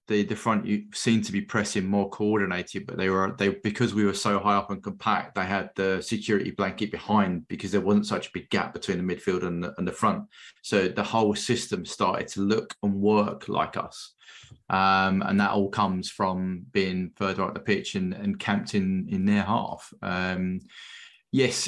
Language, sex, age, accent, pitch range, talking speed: English, male, 20-39, British, 95-105 Hz, 200 wpm